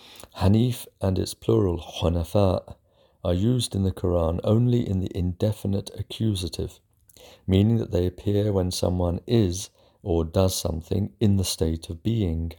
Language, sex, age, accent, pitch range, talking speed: English, male, 50-69, British, 90-105 Hz, 145 wpm